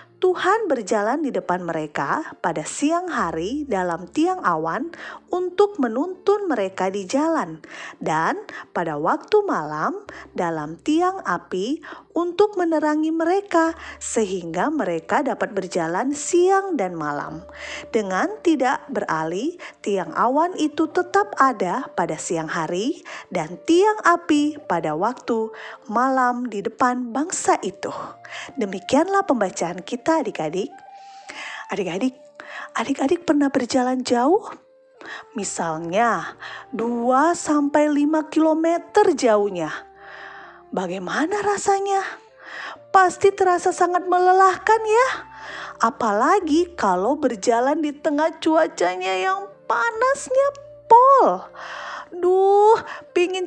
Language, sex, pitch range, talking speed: Indonesian, female, 230-360 Hz, 100 wpm